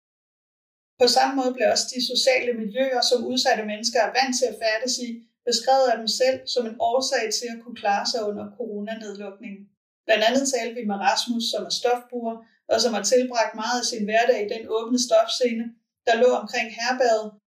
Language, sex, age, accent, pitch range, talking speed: Danish, female, 30-49, native, 215-250 Hz, 190 wpm